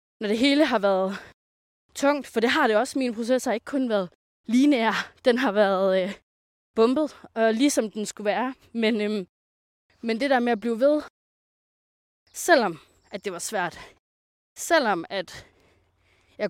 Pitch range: 195-255 Hz